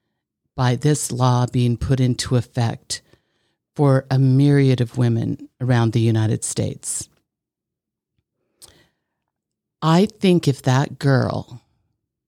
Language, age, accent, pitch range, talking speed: English, 50-69, American, 125-150 Hz, 105 wpm